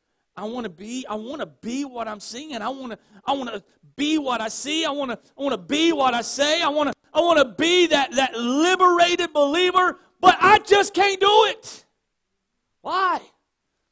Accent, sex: American, male